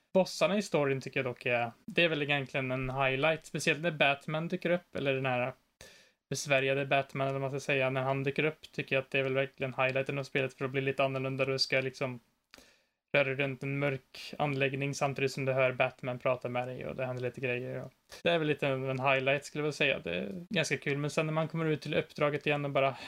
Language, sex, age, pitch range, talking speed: Swedish, male, 20-39, 135-155 Hz, 235 wpm